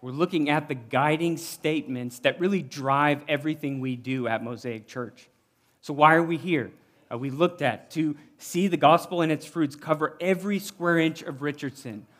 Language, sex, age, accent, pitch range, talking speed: English, male, 40-59, American, 130-160 Hz, 180 wpm